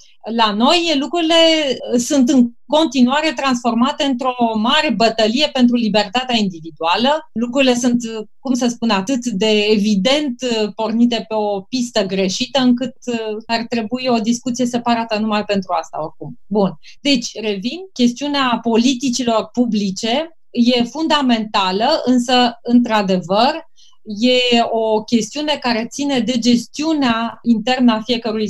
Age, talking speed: 30-49, 120 wpm